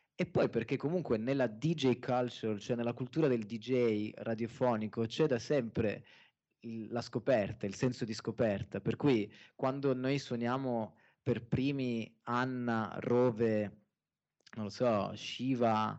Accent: native